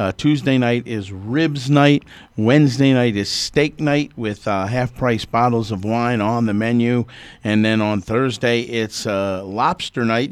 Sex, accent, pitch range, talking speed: male, American, 110-140 Hz, 170 wpm